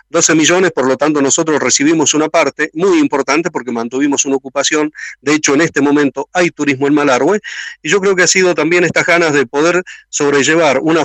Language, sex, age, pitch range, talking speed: Spanish, male, 40-59, 130-160 Hz, 200 wpm